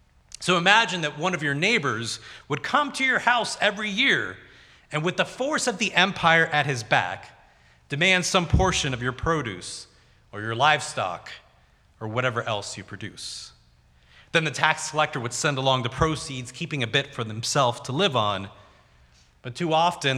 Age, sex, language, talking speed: 30-49, male, English, 170 wpm